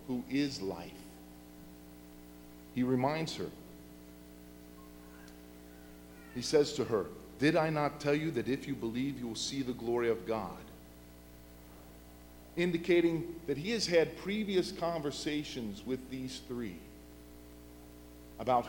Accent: American